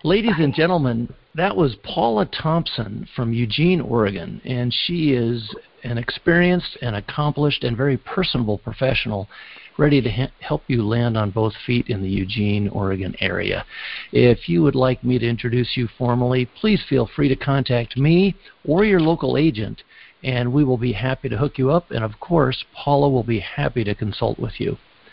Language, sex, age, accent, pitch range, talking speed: English, male, 50-69, American, 115-150 Hz, 175 wpm